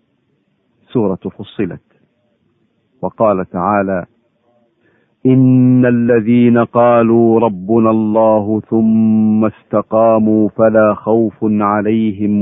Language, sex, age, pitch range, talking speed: Arabic, male, 50-69, 105-115 Hz, 70 wpm